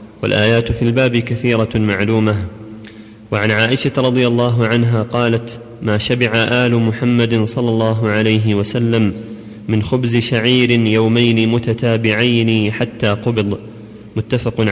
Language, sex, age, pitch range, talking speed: Arabic, male, 30-49, 110-125 Hz, 110 wpm